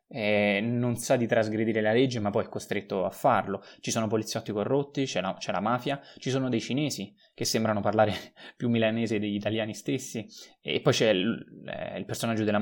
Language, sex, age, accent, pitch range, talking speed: Italian, male, 20-39, native, 105-120 Hz, 185 wpm